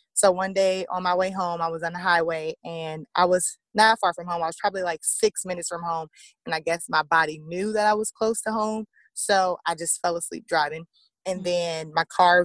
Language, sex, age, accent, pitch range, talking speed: English, female, 20-39, American, 165-200 Hz, 235 wpm